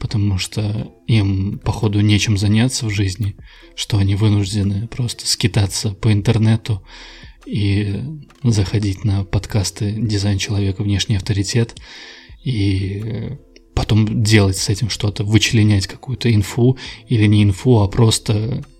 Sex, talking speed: male, 120 wpm